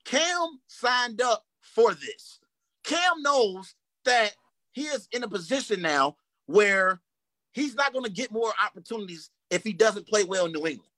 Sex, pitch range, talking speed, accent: male, 185-240 Hz, 165 wpm, American